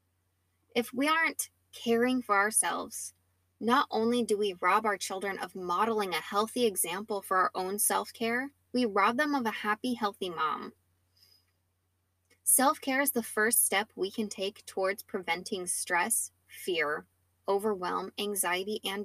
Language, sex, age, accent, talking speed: English, female, 10-29, American, 140 wpm